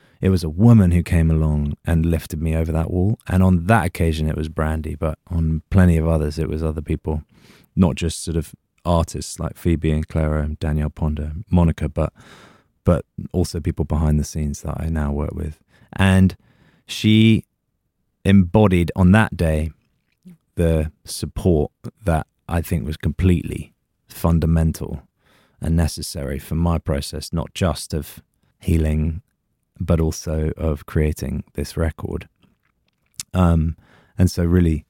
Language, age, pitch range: English, 20-39, 75-90 Hz